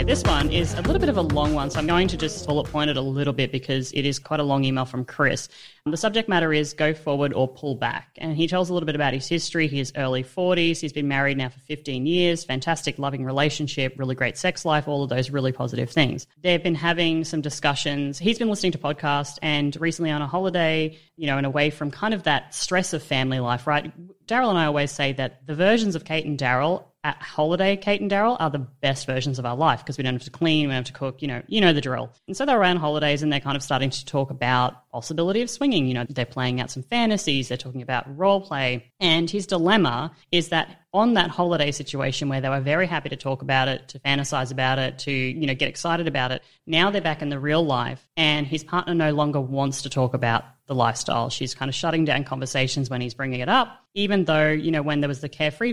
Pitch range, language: 135-165 Hz, English